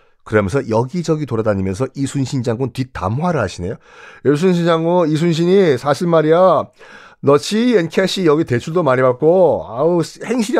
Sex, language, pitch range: male, Korean, 145-210 Hz